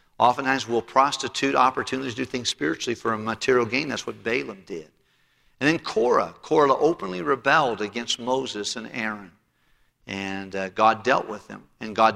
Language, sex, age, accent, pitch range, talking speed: English, male, 50-69, American, 105-125 Hz, 170 wpm